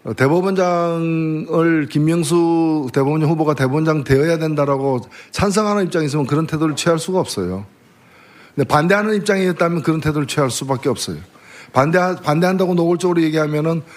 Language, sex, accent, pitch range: Korean, male, native, 145-195 Hz